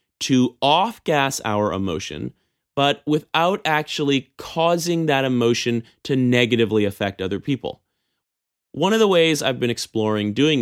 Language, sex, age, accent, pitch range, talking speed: English, male, 30-49, American, 110-165 Hz, 130 wpm